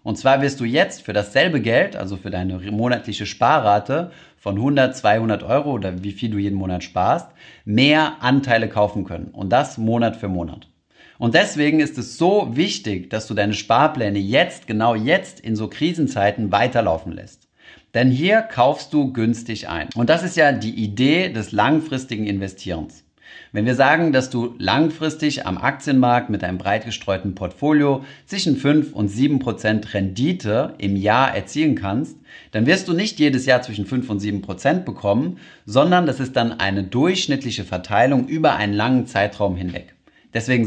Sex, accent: male, German